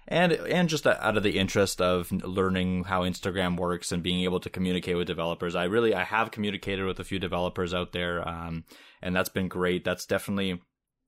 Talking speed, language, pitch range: 200 wpm, English, 95-110 Hz